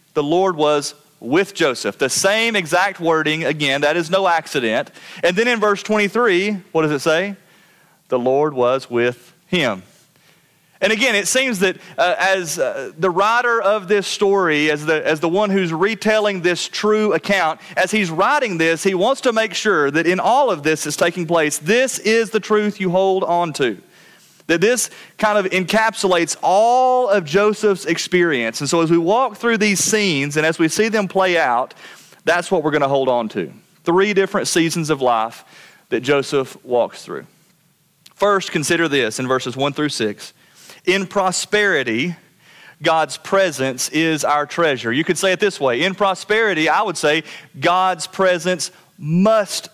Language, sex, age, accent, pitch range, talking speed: English, male, 30-49, American, 155-200 Hz, 175 wpm